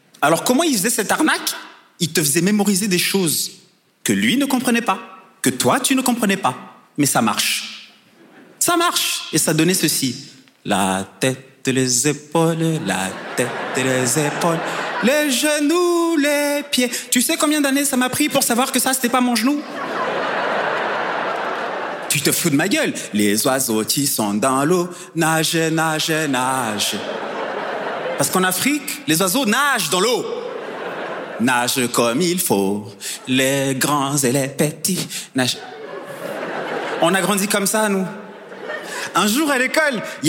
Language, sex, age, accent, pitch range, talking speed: French, male, 30-49, French, 150-245 Hz, 155 wpm